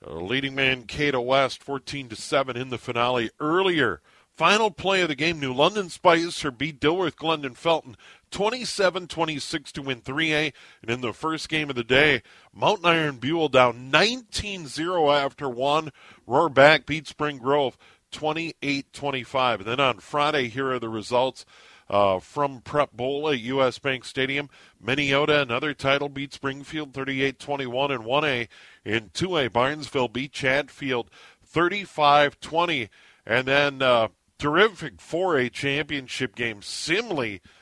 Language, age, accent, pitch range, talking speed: English, 50-69, American, 125-150 Hz, 135 wpm